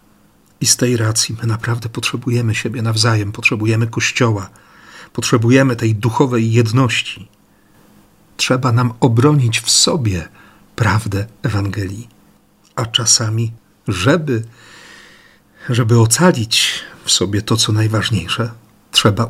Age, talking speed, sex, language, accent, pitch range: 50-69, 105 wpm, male, Polish, native, 105-125 Hz